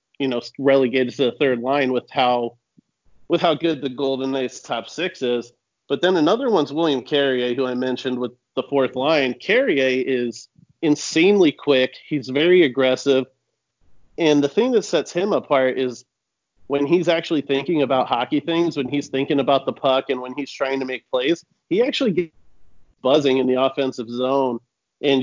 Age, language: 40-59, English